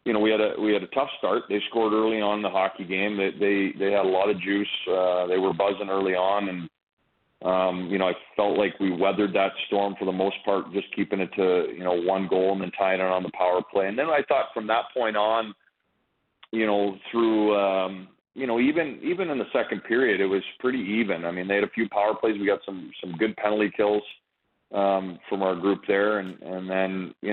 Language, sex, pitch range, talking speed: English, male, 95-105 Hz, 245 wpm